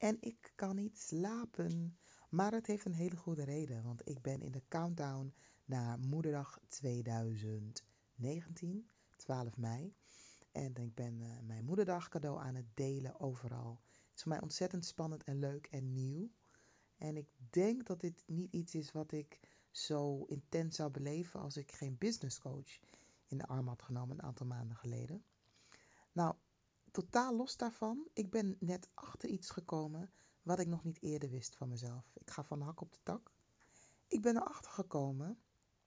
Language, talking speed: Dutch, 165 wpm